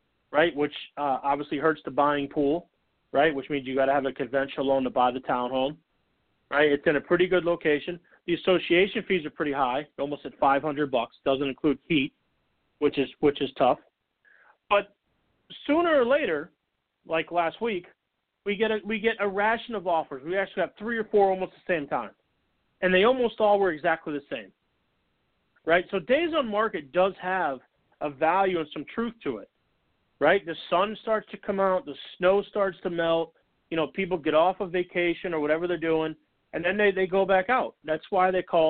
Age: 40-59